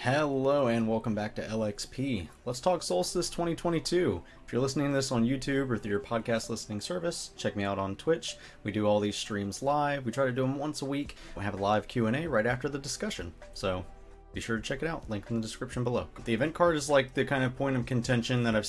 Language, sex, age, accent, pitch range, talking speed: English, male, 30-49, American, 95-130 Hz, 245 wpm